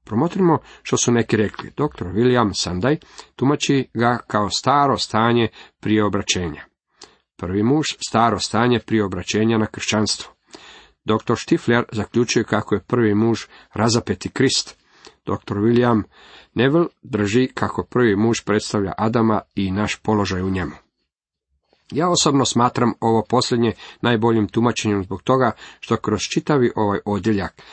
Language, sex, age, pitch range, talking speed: Croatian, male, 40-59, 105-125 Hz, 130 wpm